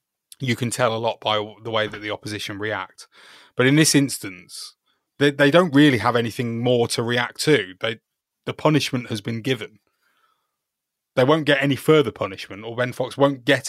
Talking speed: 185 wpm